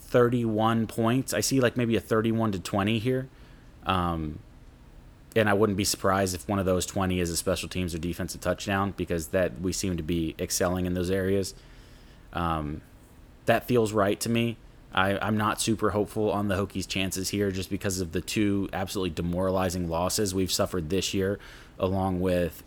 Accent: American